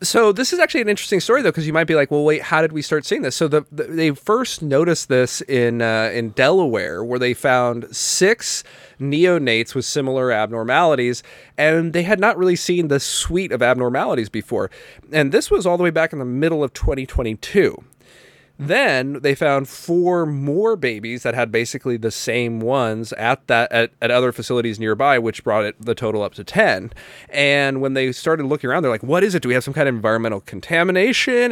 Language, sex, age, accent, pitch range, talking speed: English, male, 30-49, American, 115-155 Hz, 210 wpm